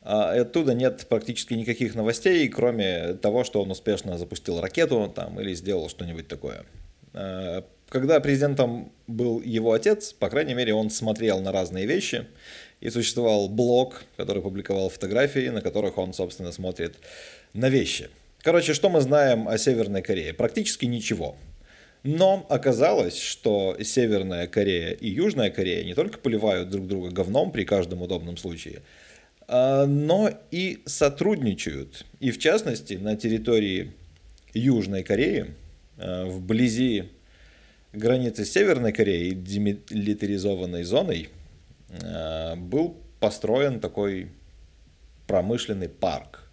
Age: 20-39